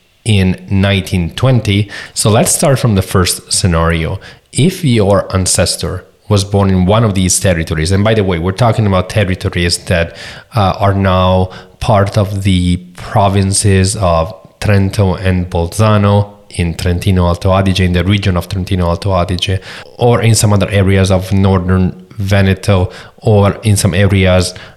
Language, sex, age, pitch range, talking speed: English, male, 30-49, 90-105 Hz, 150 wpm